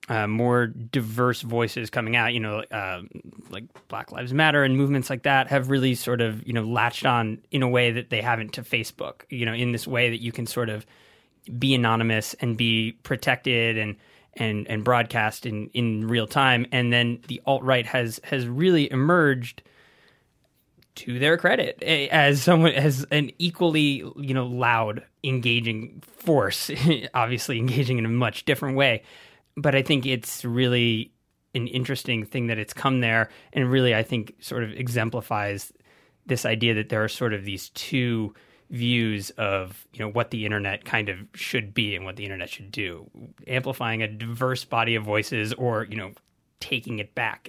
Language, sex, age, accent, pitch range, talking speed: English, male, 20-39, American, 110-130 Hz, 180 wpm